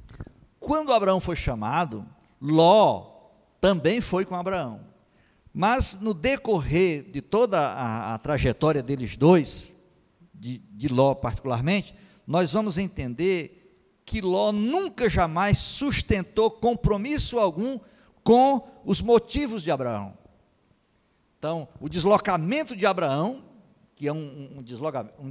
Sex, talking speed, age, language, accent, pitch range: male, 110 wpm, 50-69, Portuguese, Brazilian, 145-200 Hz